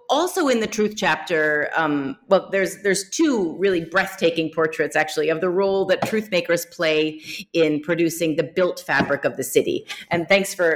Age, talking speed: 30-49, 180 wpm